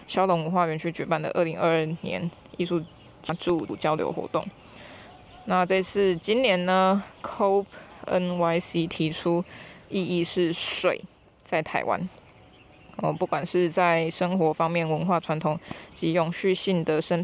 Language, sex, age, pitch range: Chinese, female, 20-39, 165-195 Hz